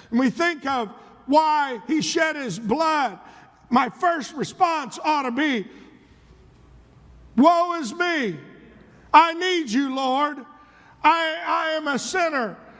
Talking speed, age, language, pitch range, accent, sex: 125 wpm, 50-69, English, 230-275 Hz, American, male